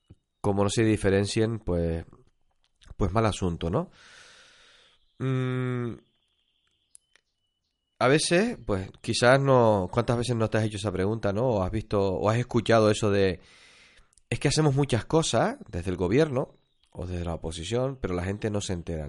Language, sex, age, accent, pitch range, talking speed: Spanish, male, 30-49, Spanish, 95-125 Hz, 155 wpm